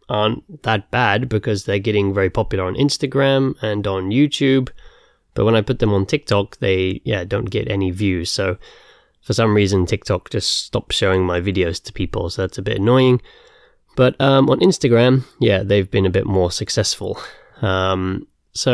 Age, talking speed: 20-39, 180 wpm